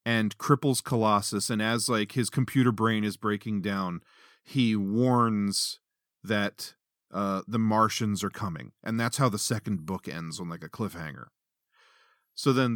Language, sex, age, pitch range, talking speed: English, male, 40-59, 105-130 Hz, 155 wpm